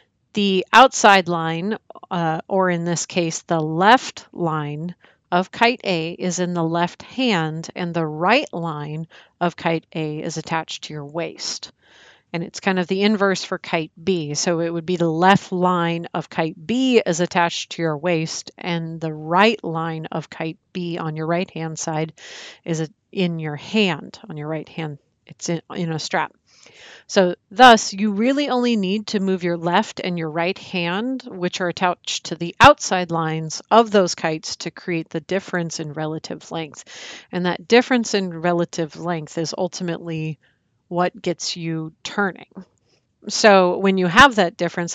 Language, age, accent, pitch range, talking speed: English, 40-59, American, 160-190 Hz, 170 wpm